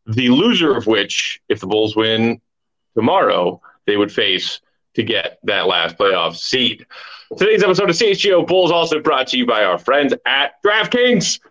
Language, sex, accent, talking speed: English, male, American, 165 wpm